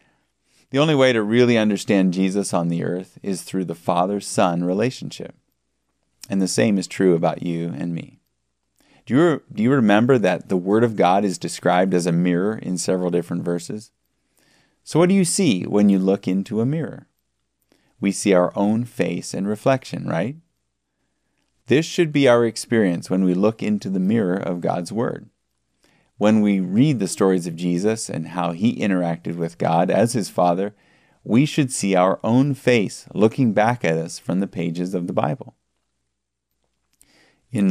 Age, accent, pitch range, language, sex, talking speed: 30-49, American, 85-110 Hz, English, male, 175 wpm